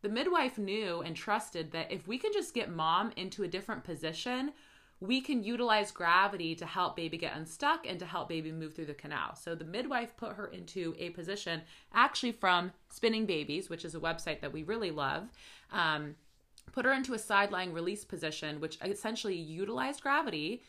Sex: female